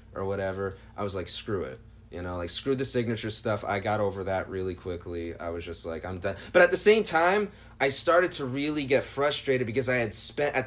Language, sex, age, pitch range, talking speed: English, male, 30-49, 105-145 Hz, 235 wpm